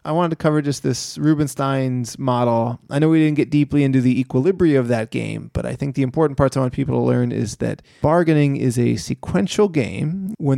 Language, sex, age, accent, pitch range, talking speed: English, male, 30-49, American, 120-150 Hz, 220 wpm